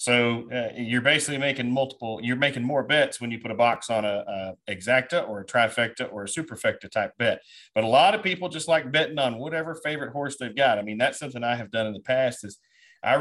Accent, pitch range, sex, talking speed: American, 120-140 Hz, male, 240 wpm